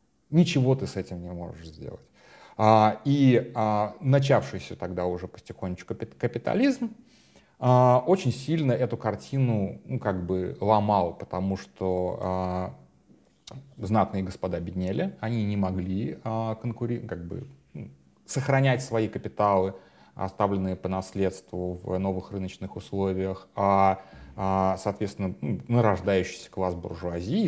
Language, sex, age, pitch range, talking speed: Russian, male, 30-49, 90-120 Hz, 120 wpm